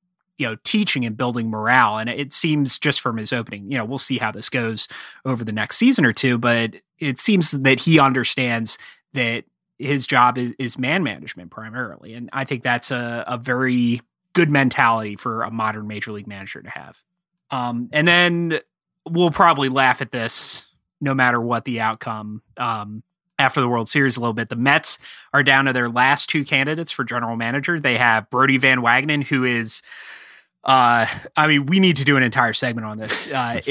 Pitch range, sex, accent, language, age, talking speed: 120-155 Hz, male, American, English, 30-49, 195 wpm